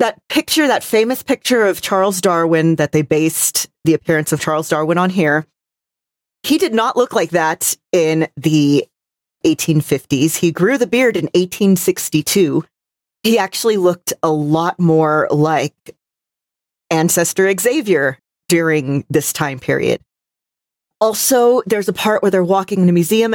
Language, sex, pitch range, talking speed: English, female, 155-195 Hz, 145 wpm